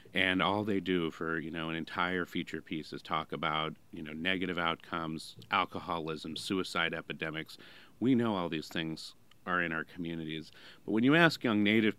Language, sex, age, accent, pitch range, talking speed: English, male, 40-59, American, 85-105 Hz, 180 wpm